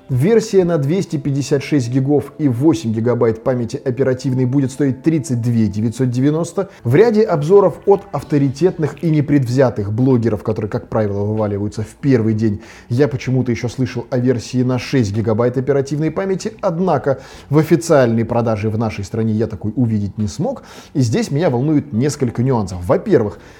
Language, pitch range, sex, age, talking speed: Russian, 115-145 Hz, male, 20-39, 145 wpm